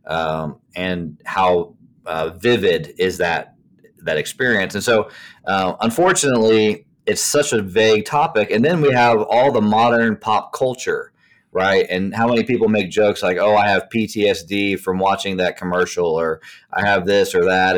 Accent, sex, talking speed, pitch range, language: American, male, 165 wpm, 95-135 Hz, English